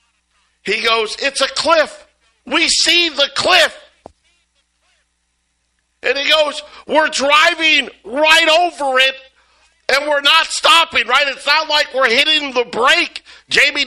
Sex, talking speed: male, 130 wpm